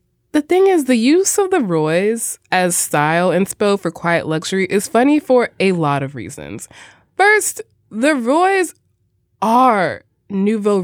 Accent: American